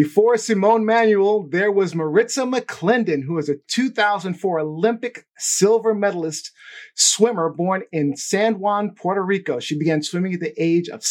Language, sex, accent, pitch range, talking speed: English, male, American, 155-205 Hz, 150 wpm